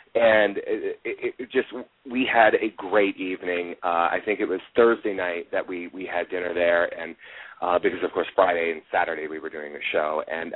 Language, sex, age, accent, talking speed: English, male, 30-49, American, 210 wpm